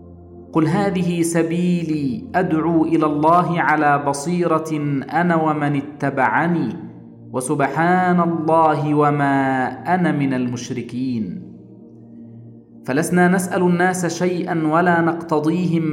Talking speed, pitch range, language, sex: 85 wpm, 140-175 Hz, Arabic, male